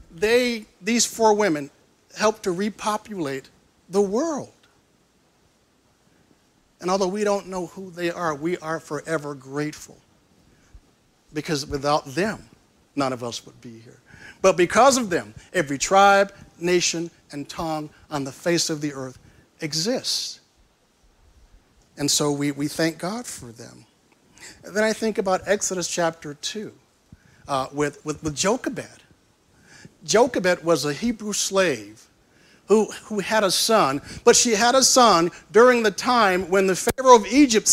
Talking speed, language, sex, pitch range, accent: 135 wpm, English, male, 150-215 Hz, American